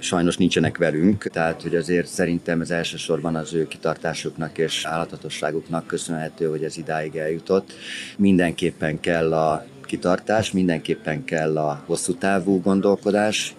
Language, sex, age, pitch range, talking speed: Hungarian, male, 30-49, 80-90 Hz, 130 wpm